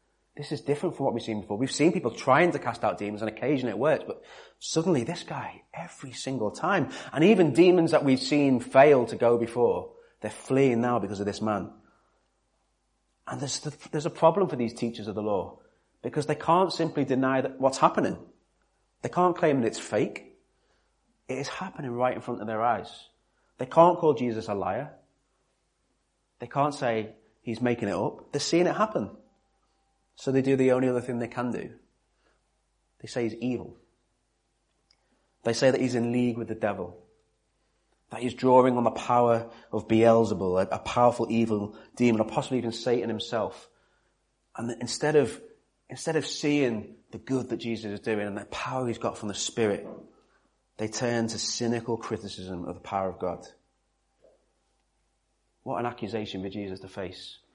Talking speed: 180 wpm